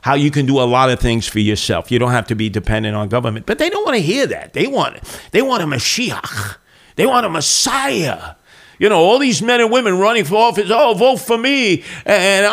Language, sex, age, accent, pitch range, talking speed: English, male, 50-69, American, 120-170 Hz, 240 wpm